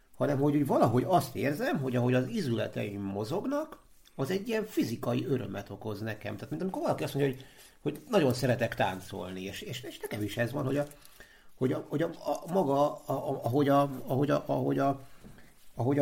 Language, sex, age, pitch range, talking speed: Hungarian, male, 60-79, 110-145 Hz, 165 wpm